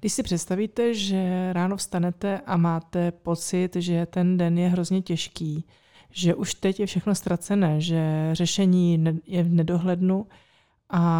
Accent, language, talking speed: native, Czech, 145 wpm